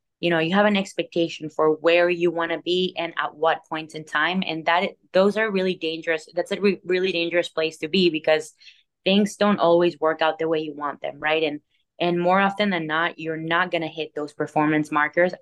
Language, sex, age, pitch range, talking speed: English, female, 20-39, 155-180 Hz, 225 wpm